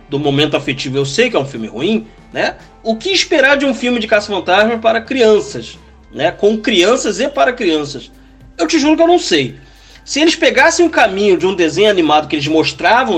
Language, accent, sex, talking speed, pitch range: Portuguese, Brazilian, male, 210 wpm, 150-250 Hz